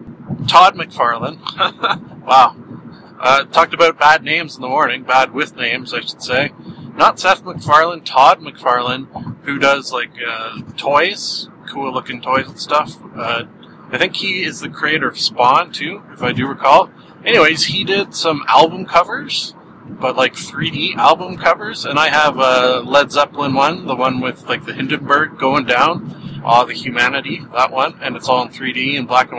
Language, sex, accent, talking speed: English, male, American, 175 wpm